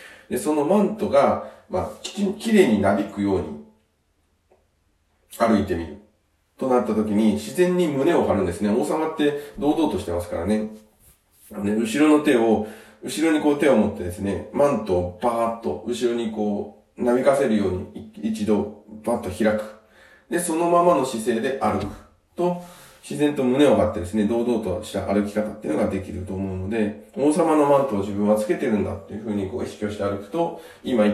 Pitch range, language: 100-125 Hz, Japanese